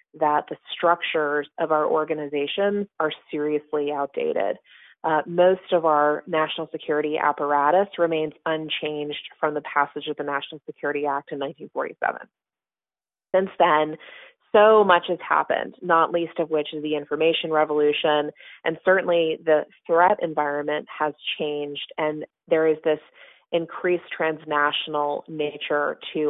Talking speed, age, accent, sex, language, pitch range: 130 wpm, 30-49, American, female, English, 150-175 Hz